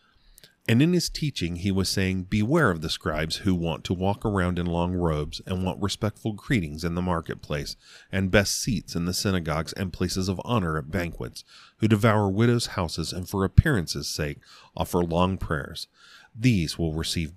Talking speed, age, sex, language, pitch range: 180 wpm, 40-59, male, English, 80-110 Hz